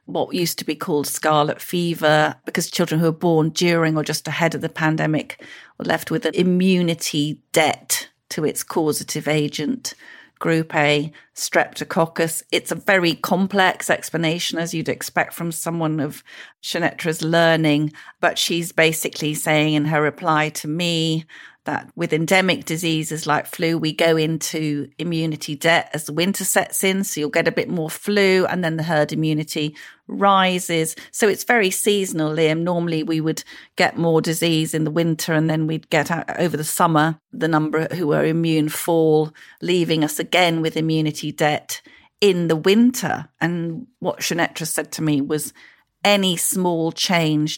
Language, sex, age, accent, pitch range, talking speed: English, female, 40-59, British, 155-170 Hz, 165 wpm